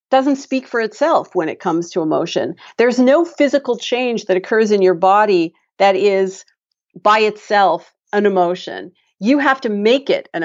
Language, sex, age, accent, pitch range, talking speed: English, female, 40-59, American, 190-260 Hz, 170 wpm